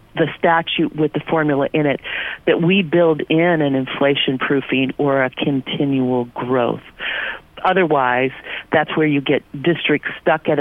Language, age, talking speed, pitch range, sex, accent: English, 50-69, 145 wpm, 140-170 Hz, female, American